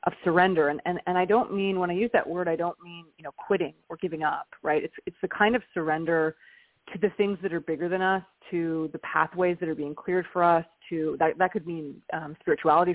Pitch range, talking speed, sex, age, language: 165-200 Hz, 245 wpm, female, 30-49, English